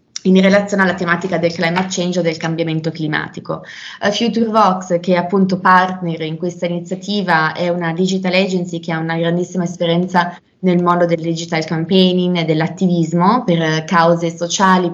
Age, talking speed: 20-39, 155 wpm